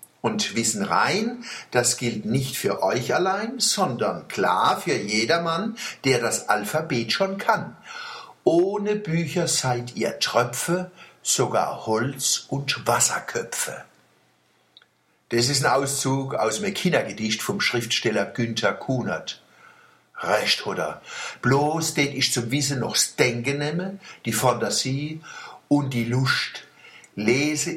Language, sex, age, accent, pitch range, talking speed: German, male, 60-79, German, 115-165 Hz, 115 wpm